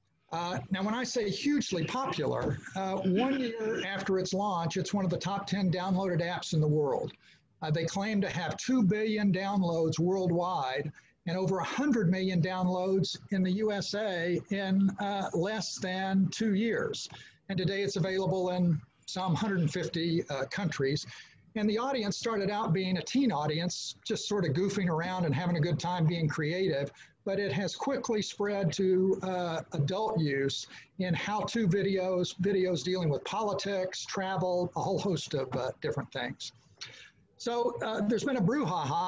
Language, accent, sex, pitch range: English, American, male, 170-200 Hz